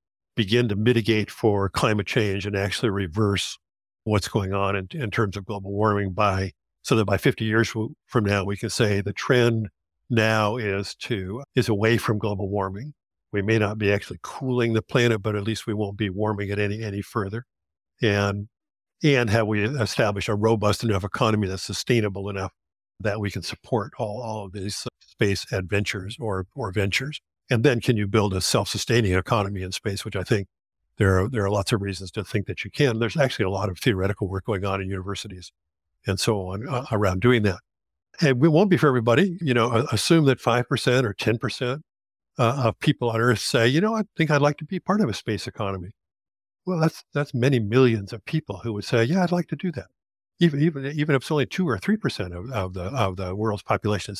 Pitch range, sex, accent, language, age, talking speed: 100-125 Hz, male, American, English, 50-69, 215 wpm